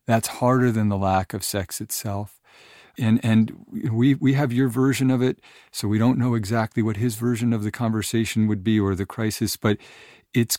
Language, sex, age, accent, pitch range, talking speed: English, male, 50-69, American, 105-120 Hz, 200 wpm